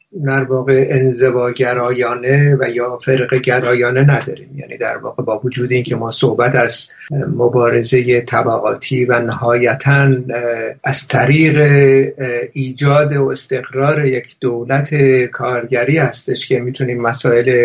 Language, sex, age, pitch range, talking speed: Persian, male, 50-69, 125-145 Hz, 110 wpm